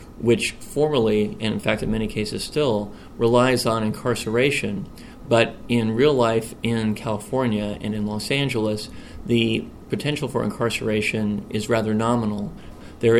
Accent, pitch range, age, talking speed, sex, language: American, 105-120 Hz, 40-59, 135 wpm, male, English